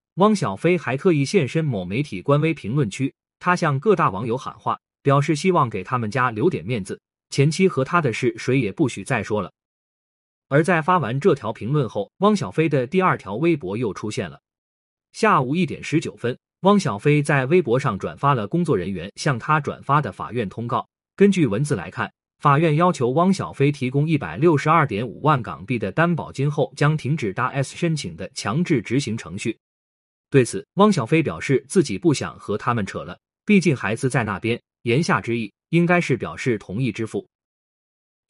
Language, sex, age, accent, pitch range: Chinese, male, 30-49, native, 130-170 Hz